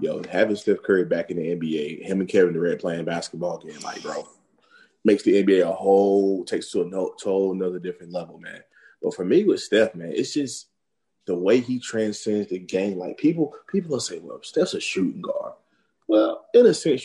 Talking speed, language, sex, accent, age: 215 wpm, English, male, American, 30-49